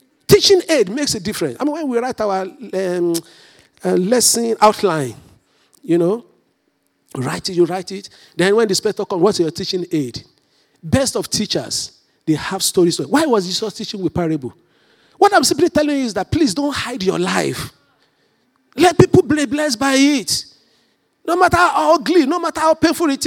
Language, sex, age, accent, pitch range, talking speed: English, male, 50-69, Nigerian, 165-265 Hz, 180 wpm